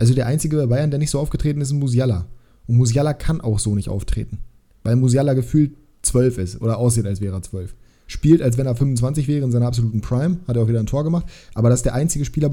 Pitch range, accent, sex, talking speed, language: 120-150 Hz, German, male, 255 wpm, German